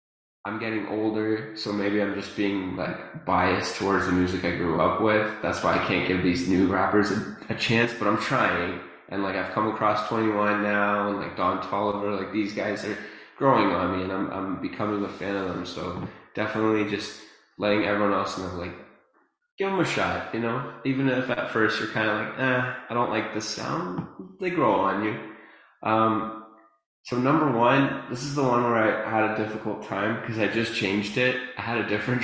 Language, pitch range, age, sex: English, 100-120 Hz, 20-39, male